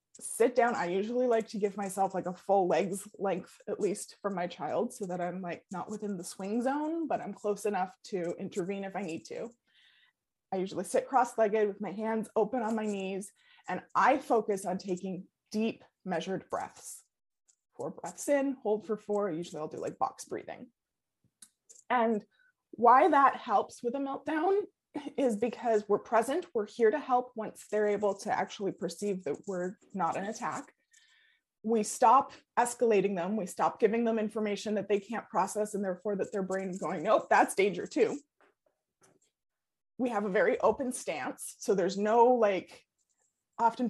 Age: 20-39